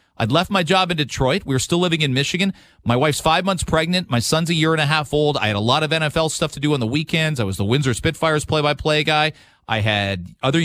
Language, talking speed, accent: English, 265 wpm, American